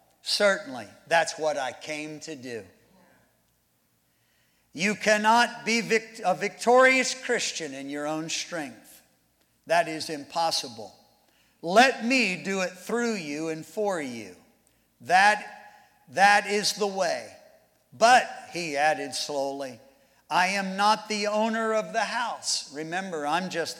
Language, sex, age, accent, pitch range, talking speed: English, male, 50-69, American, 140-190 Hz, 125 wpm